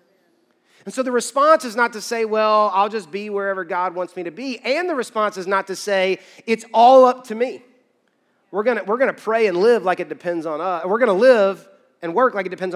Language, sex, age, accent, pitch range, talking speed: English, male, 30-49, American, 160-210 Hz, 240 wpm